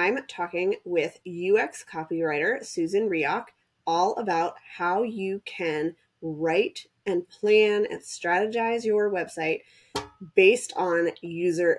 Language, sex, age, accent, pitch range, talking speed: English, female, 20-39, American, 175-275 Hz, 110 wpm